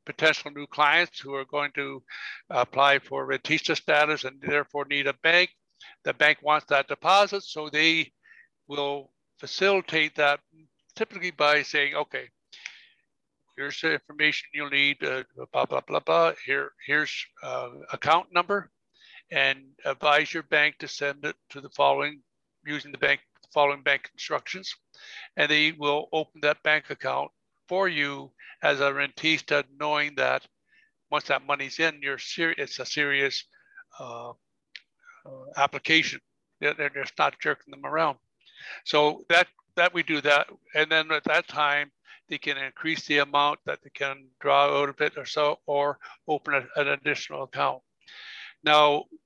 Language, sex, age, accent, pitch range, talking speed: English, male, 60-79, American, 140-165 Hz, 150 wpm